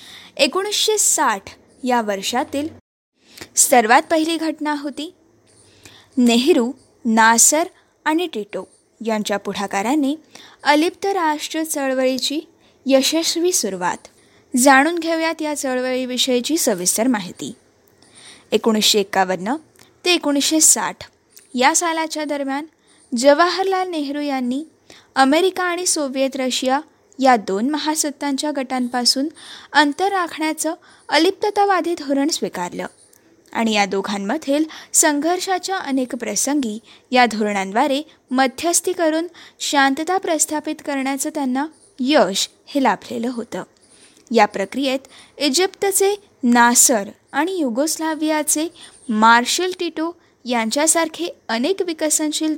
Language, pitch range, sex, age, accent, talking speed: Marathi, 255-330 Hz, female, 20-39, native, 85 wpm